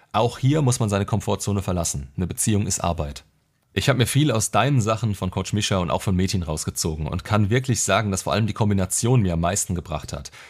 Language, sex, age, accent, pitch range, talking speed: German, male, 30-49, German, 90-110 Hz, 230 wpm